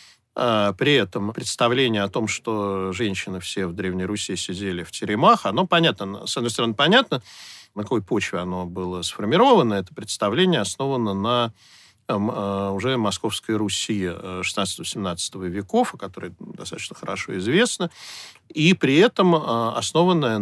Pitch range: 95-120 Hz